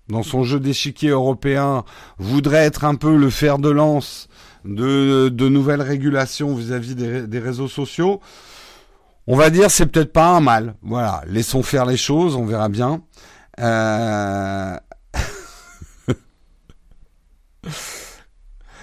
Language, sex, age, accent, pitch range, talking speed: French, male, 50-69, French, 105-145 Hz, 125 wpm